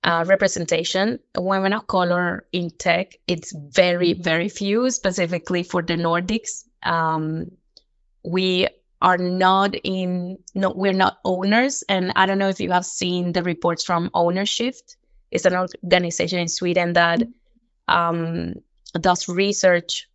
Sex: female